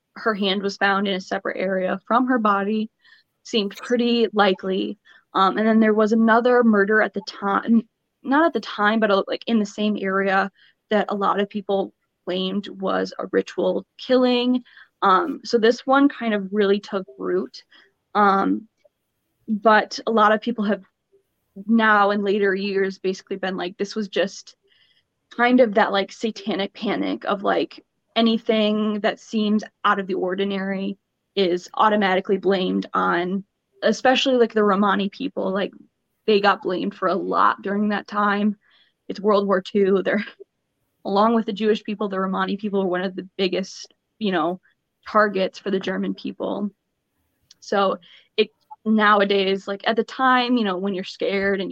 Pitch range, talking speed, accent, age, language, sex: 195-220 Hz, 165 wpm, American, 10-29, English, female